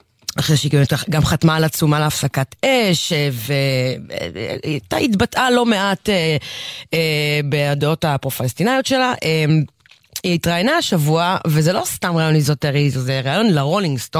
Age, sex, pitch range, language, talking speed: 30-49, female, 145-195 Hz, English, 115 wpm